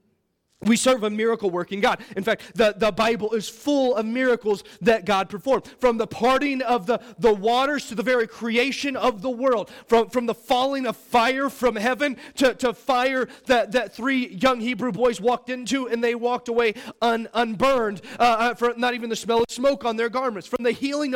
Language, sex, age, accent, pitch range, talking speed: English, male, 30-49, American, 230-265 Hz, 195 wpm